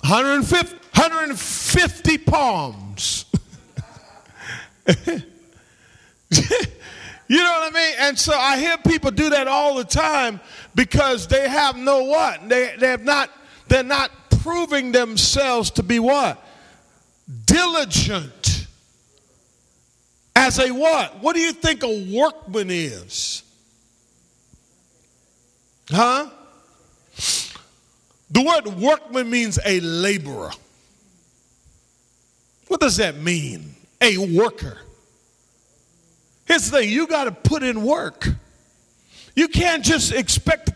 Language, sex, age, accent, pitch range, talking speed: English, male, 50-69, American, 210-290 Hz, 105 wpm